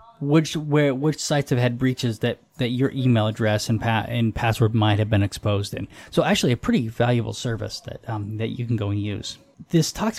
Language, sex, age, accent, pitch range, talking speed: English, male, 20-39, American, 115-155 Hz, 220 wpm